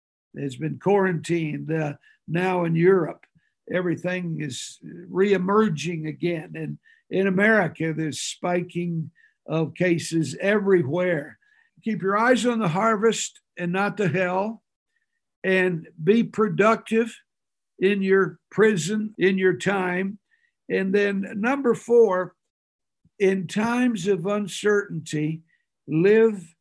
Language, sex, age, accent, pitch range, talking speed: English, male, 60-79, American, 170-205 Hz, 105 wpm